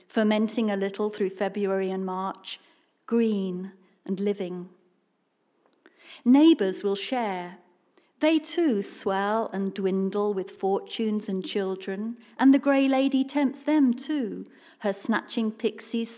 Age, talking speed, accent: 50-69, 120 wpm, British